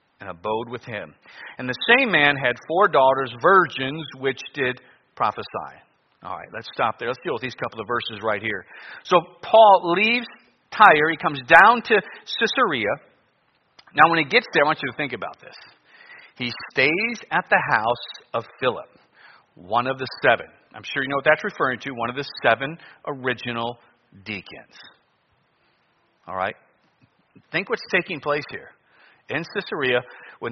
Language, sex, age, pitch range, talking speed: English, male, 40-59, 120-155 Hz, 165 wpm